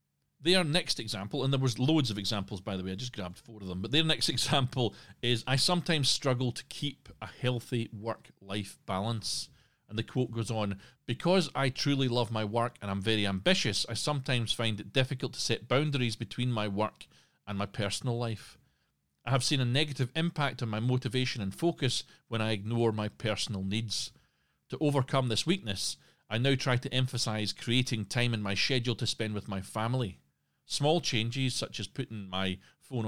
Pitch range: 105-130 Hz